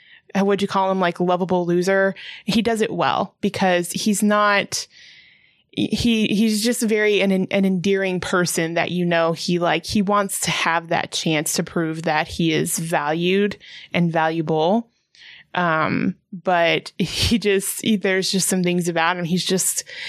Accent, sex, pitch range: American, female, 170-205 Hz